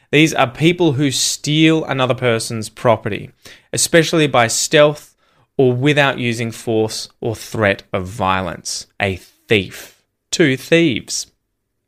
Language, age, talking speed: English, 20-39, 115 wpm